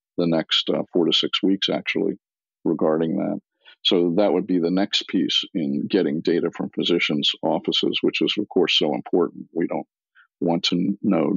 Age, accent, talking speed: 50-69, American, 180 wpm